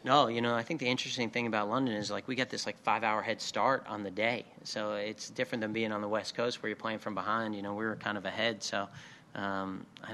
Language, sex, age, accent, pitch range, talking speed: English, male, 30-49, American, 100-110 Hz, 270 wpm